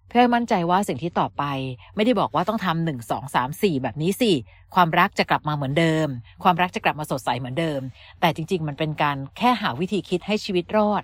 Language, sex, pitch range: Thai, female, 140-190 Hz